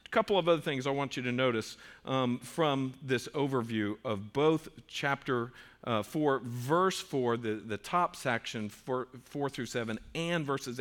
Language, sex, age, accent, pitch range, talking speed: English, male, 50-69, American, 115-155 Hz, 165 wpm